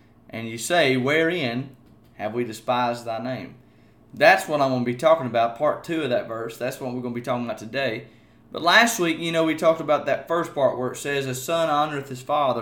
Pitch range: 130-160 Hz